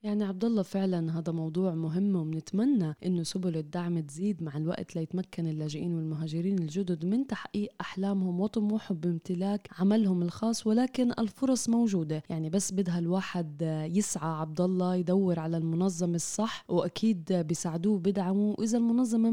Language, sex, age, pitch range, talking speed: Arabic, female, 20-39, 175-215 Hz, 135 wpm